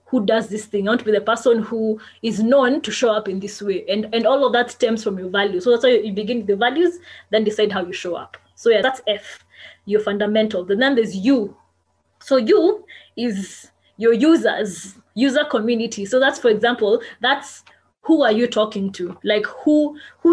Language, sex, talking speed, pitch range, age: English, female, 215 wpm, 210-255 Hz, 20-39